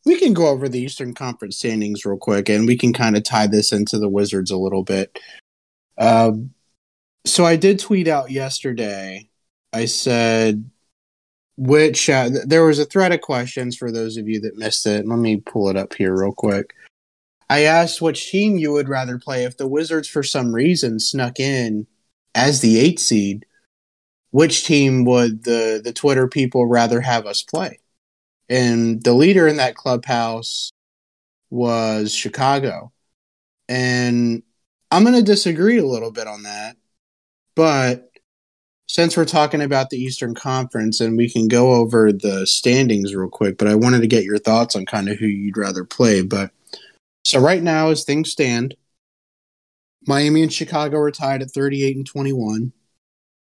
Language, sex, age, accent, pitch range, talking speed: English, male, 30-49, American, 105-140 Hz, 170 wpm